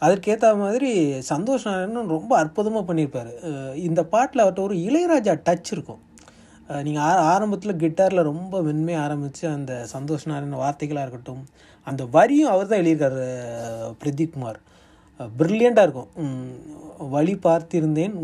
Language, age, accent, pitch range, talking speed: Tamil, 30-49, native, 140-200 Hz, 115 wpm